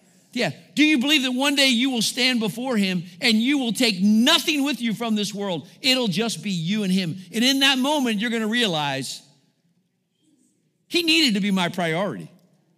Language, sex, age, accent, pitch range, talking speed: English, male, 50-69, American, 160-225 Hz, 195 wpm